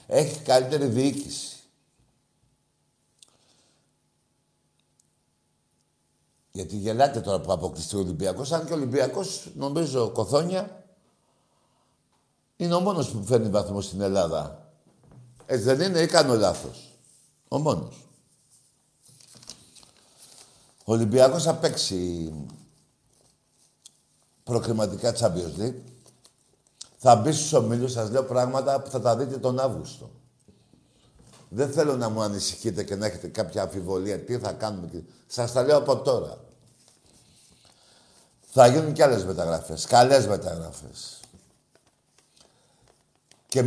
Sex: male